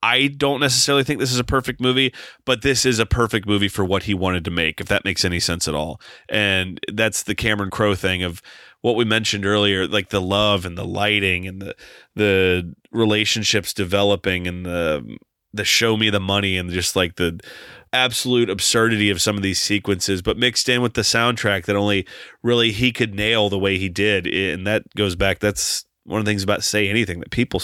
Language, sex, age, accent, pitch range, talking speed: English, male, 30-49, American, 95-115 Hz, 215 wpm